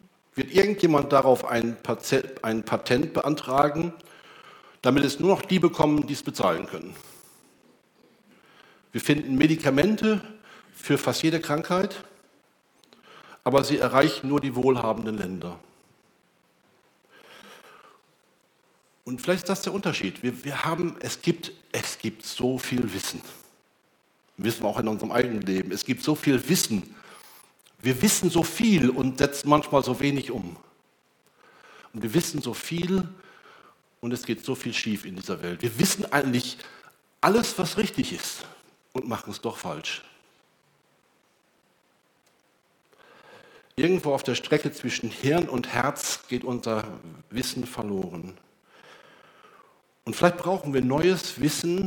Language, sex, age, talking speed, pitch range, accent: German, male, 60-79, 125 wpm, 120-175 Hz, German